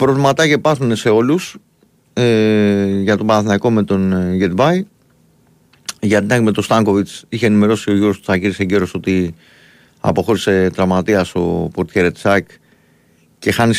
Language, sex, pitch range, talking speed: Greek, male, 95-125 Hz, 135 wpm